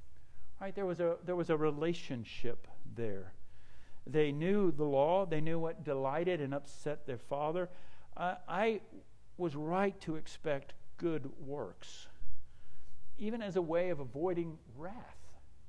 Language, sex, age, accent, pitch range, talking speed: English, male, 60-79, American, 110-160 Hz, 125 wpm